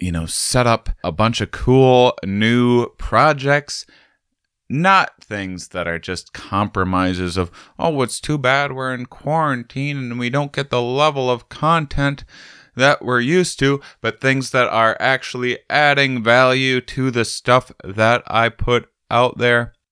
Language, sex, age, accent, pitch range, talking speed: English, male, 20-39, American, 100-140 Hz, 155 wpm